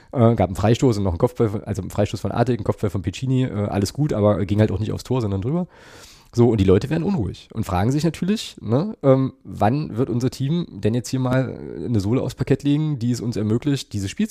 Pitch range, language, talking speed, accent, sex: 105-135 Hz, German, 255 wpm, German, male